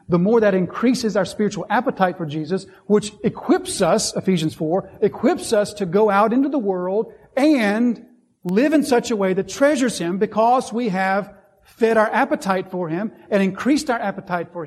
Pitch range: 180-230 Hz